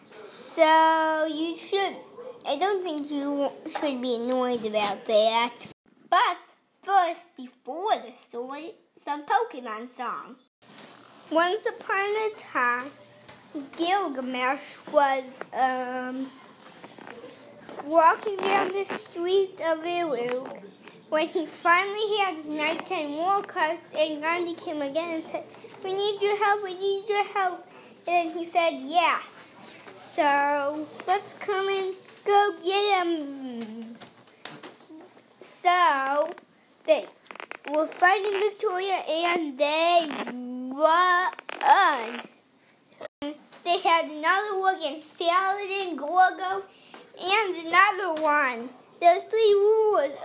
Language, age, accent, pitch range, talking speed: English, 20-39, American, 280-385 Hz, 105 wpm